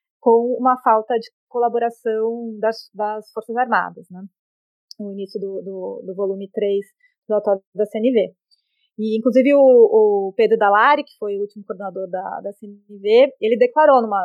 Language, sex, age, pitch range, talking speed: Portuguese, female, 20-39, 205-250 Hz, 155 wpm